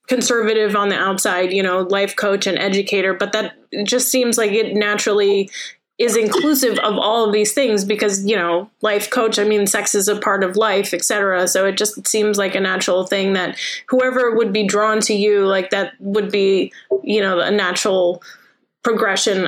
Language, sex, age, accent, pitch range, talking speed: English, female, 20-39, American, 195-245 Hz, 195 wpm